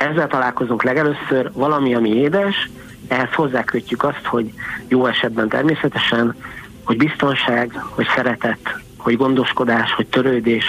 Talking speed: 120 wpm